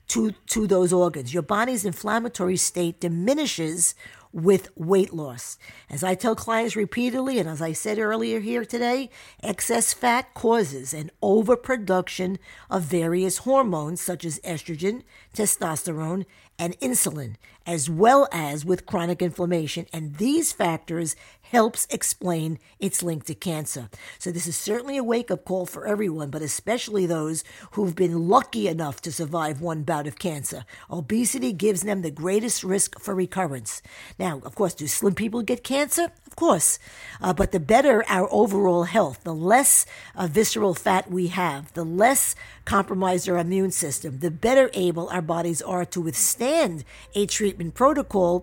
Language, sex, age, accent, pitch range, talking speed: English, female, 50-69, American, 170-220 Hz, 155 wpm